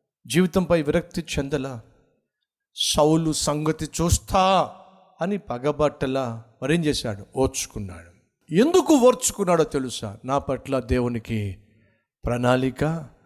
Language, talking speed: Telugu, 80 wpm